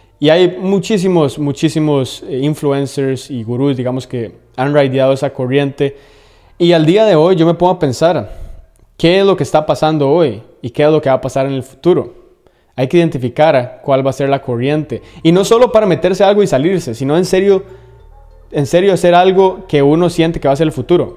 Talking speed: 210 wpm